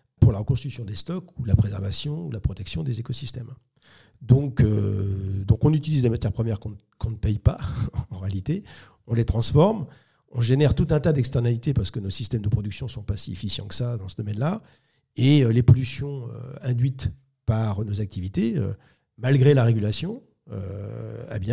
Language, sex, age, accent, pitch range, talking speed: French, male, 40-59, French, 105-135 Hz, 185 wpm